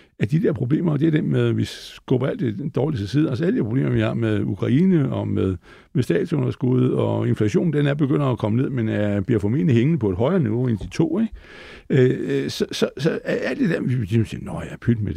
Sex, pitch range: male, 110-145 Hz